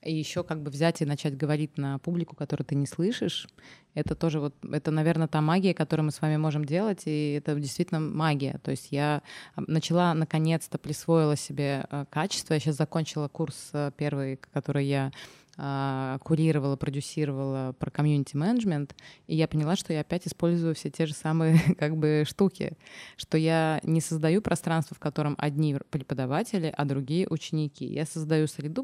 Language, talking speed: Russian, 160 wpm